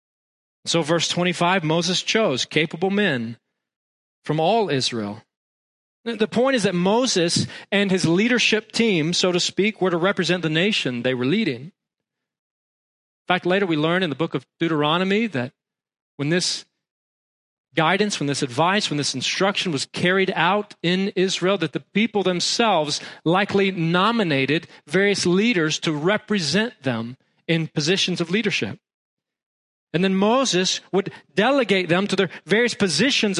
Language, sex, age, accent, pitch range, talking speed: English, male, 40-59, American, 155-200 Hz, 145 wpm